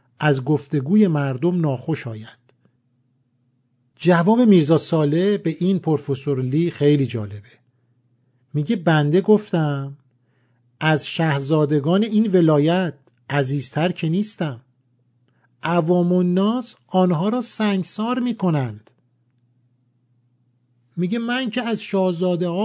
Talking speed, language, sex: 95 wpm, Persian, male